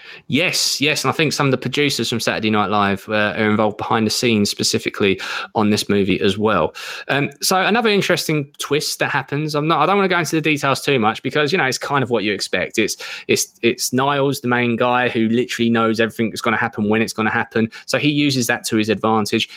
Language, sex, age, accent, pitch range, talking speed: English, male, 20-39, British, 115-145 Hz, 245 wpm